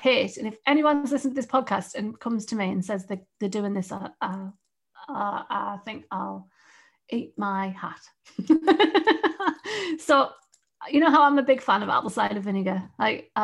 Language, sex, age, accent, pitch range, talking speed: English, female, 40-59, British, 215-280 Hz, 170 wpm